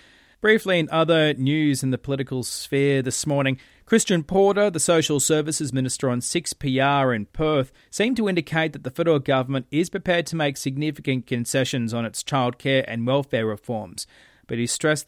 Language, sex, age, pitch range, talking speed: English, male, 30-49, 125-160 Hz, 165 wpm